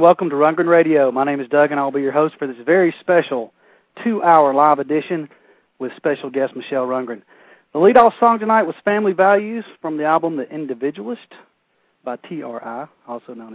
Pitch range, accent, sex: 135-180 Hz, American, male